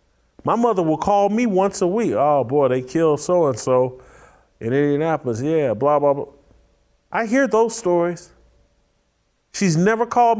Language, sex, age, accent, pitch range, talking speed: English, male, 40-59, American, 160-220 Hz, 150 wpm